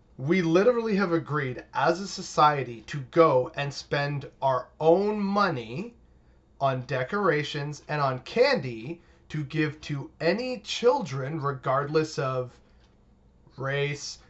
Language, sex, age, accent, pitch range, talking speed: English, male, 30-49, American, 145-200 Hz, 115 wpm